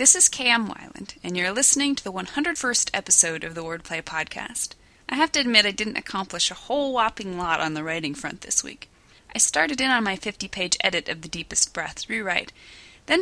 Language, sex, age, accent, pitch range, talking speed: English, female, 30-49, American, 170-260 Hz, 205 wpm